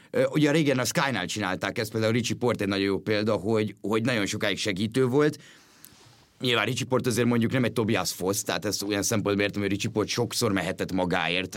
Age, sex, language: 30-49, male, Hungarian